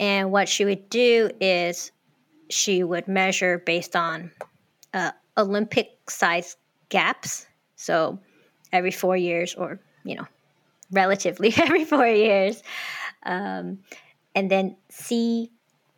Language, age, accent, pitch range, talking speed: English, 20-39, American, 180-210 Hz, 115 wpm